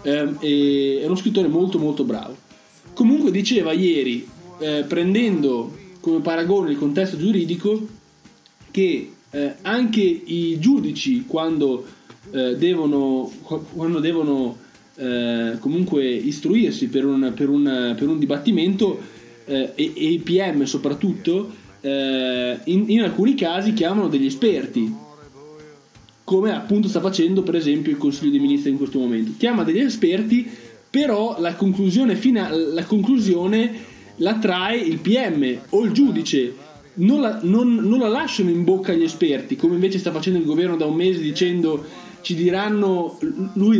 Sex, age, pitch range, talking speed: male, 20-39, 145-210 Hz, 130 wpm